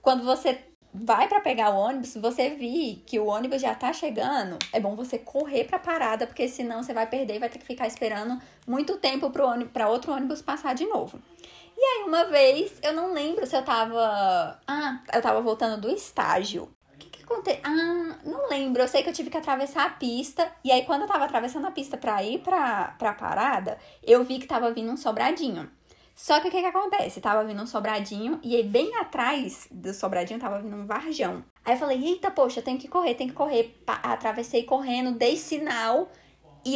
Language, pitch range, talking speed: Portuguese, 225-300 Hz, 210 wpm